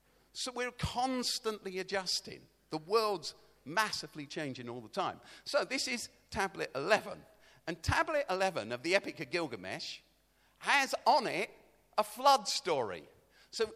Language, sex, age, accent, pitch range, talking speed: English, male, 50-69, British, 160-255 Hz, 135 wpm